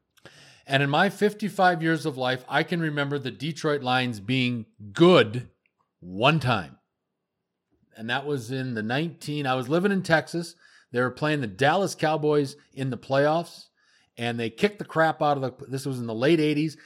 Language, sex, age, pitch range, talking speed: English, male, 40-59, 120-155 Hz, 180 wpm